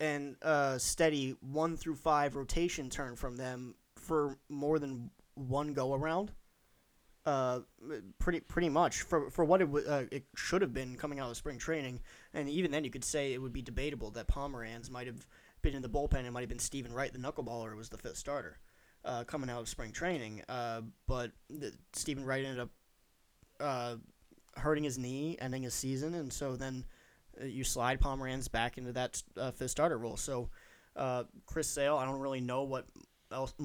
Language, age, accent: English, 20-39, American